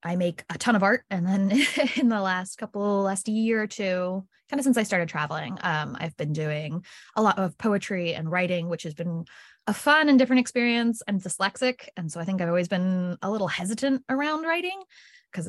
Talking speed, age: 215 wpm, 20-39